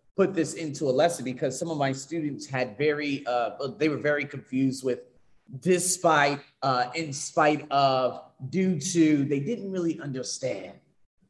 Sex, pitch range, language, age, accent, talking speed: male, 135-185 Hz, English, 30-49, American, 155 wpm